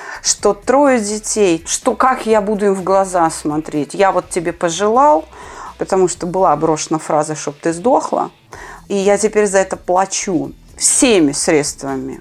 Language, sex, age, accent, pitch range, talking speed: Russian, female, 30-49, native, 170-220 Hz, 150 wpm